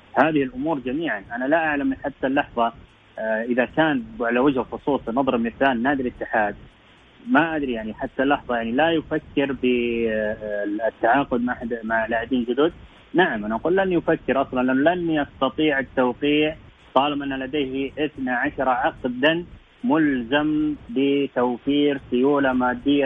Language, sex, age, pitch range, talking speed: English, male, 30-49, 125-150 Hz, 120 wpm